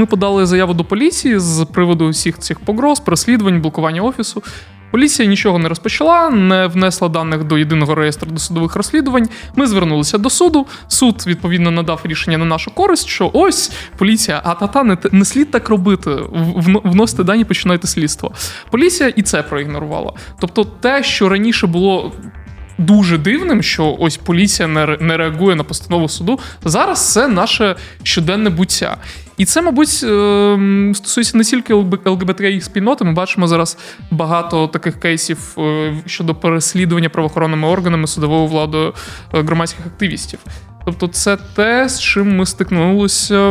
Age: 20-39